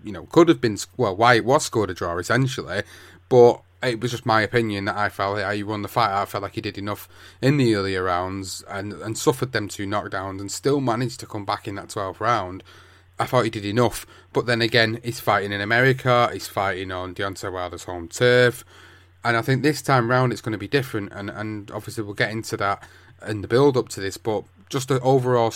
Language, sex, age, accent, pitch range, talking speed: English, male, 30-49, British, 100-120 Hz, 235 wpm